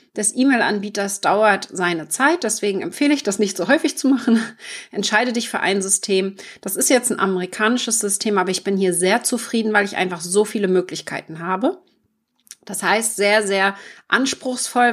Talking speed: 175 wpm